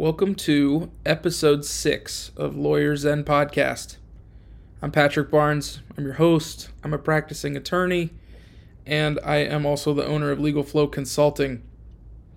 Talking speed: 135 wpm